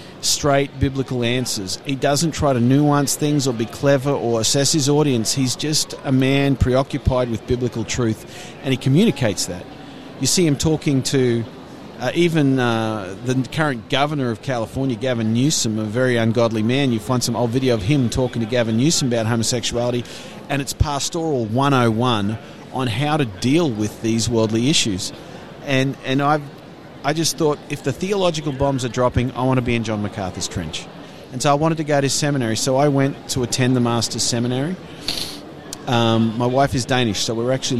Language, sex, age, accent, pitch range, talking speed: English, male, 40-59, Australian, 115-140 Hz, 185 wpm